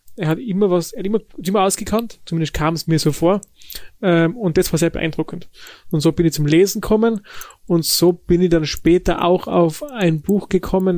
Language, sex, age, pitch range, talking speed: German, male, 30-49, 155-180 Hz, 215 wpm